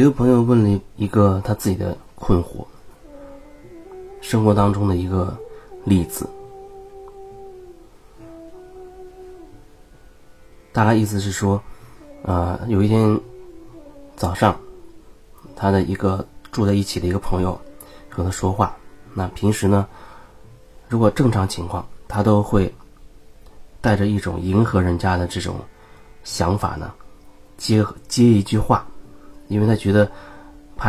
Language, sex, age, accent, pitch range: Chinese, male, 30-49, native, 95-145 Hz